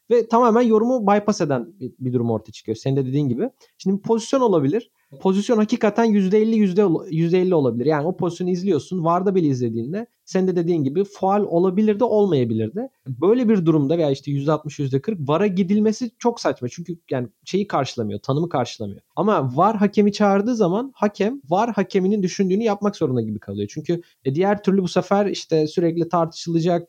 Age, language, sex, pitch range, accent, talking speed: 40-59, Turkish, male, 150-215 Hz, native, 170 wpm